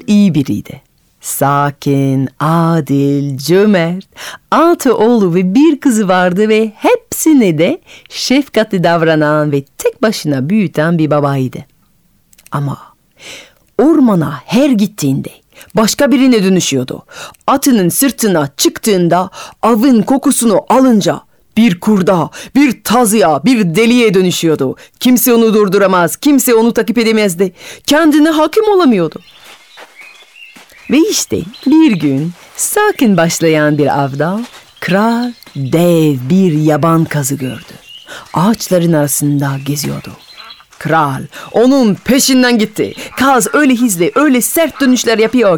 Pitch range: 175-255 Hz